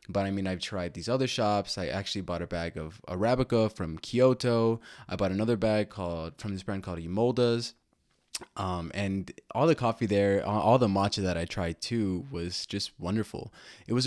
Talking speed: 190 wpm